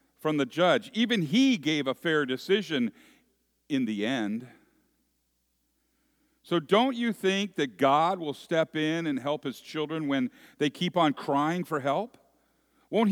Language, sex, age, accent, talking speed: English, male, 50-69, American, 150 wpm